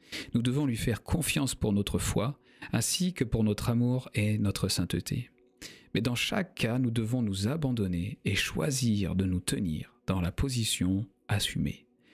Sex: male